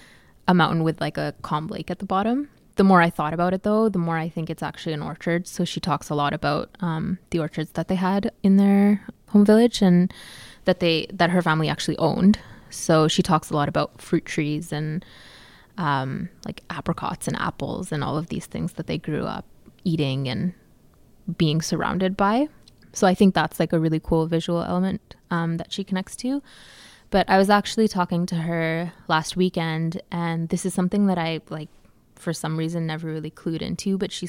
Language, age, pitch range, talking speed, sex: English, 20-39, 160-190 Hz, 205 wpm, female